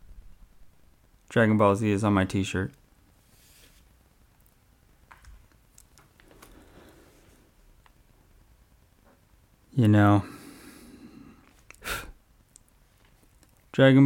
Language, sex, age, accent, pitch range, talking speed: English, male, 20-39, American, 100-120 Hz, 45 wpm